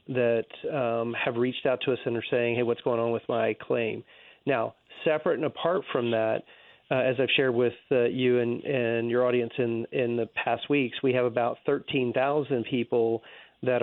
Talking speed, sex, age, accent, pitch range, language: 195 wpm, male, 40-59, American, 115-130 Hz, English